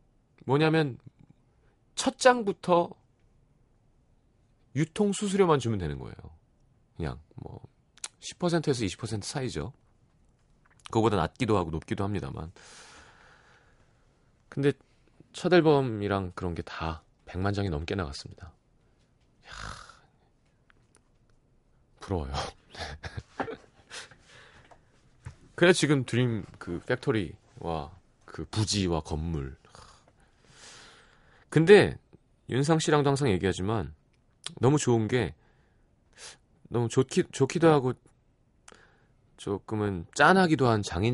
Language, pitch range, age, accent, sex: Korean, 95-145 Hz, 40-59, native, male